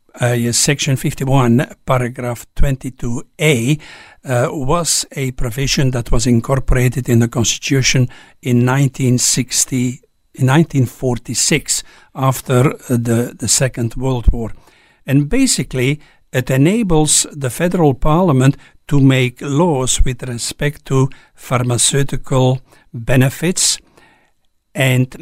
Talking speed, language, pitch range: 100 wpm, English, 125-155 Hz